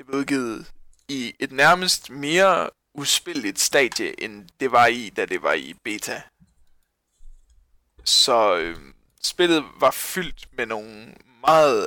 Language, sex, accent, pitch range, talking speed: English, male, Danish, 125-165 Hz, 125 wpm